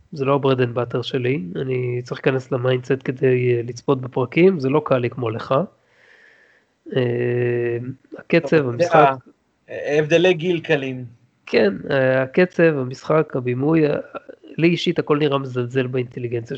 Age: 30-49